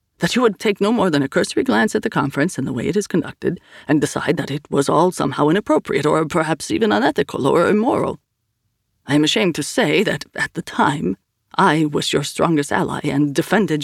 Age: 30-49